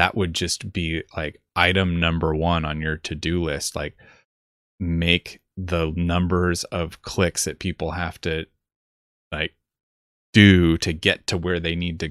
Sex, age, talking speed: male, 20-39, 155 wpm